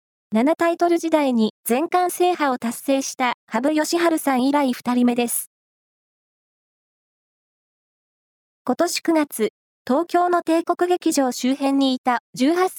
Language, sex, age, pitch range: Japanese, female, 20-39, 245-310 Hz